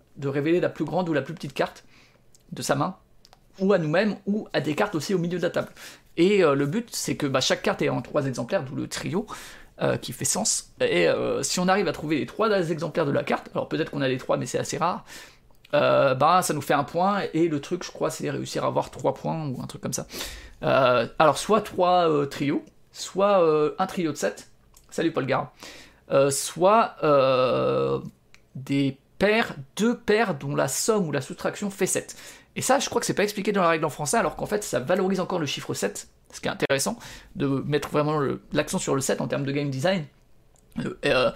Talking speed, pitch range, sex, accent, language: 230 wpm, 145-195 Hz, male, French, French